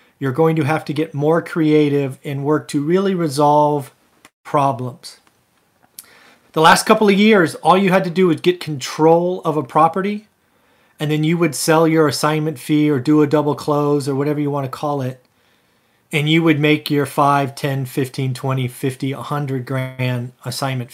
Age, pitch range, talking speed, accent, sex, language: 30-49, 135-165 Hz, 180 wpm, American, male, English